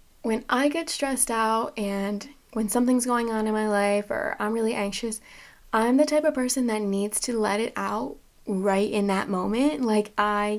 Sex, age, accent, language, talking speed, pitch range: female, 20-39, American, English, 195 wpm, 210-240 Hz